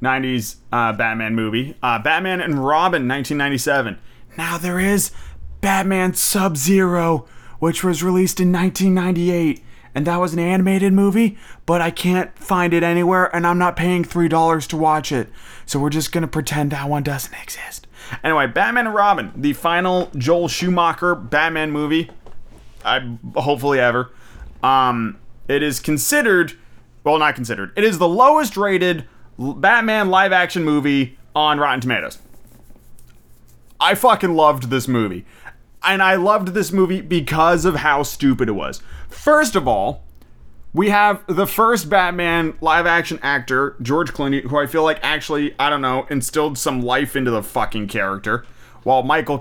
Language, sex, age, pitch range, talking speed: English, male, 30-49, 125-175 Hz, 150 wpm